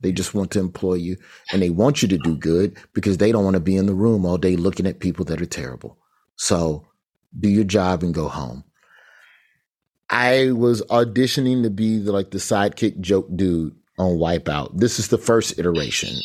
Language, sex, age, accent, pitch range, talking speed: English, male, 30-49, American, 90-130 Hz, 205 wpm